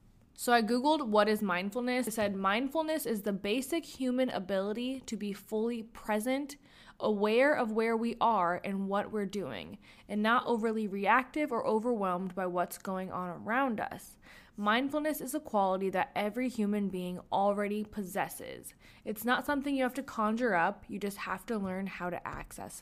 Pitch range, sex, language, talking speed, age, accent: 195-255 Hz, female, English, 170 wpm, 20-39, American